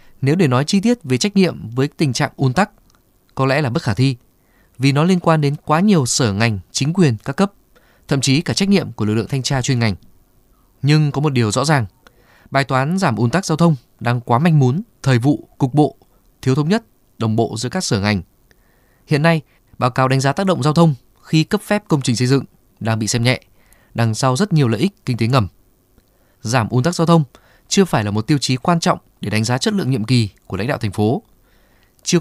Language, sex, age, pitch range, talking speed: Vietnamese, male, 20-39, 115-150 Hz, 240 wpm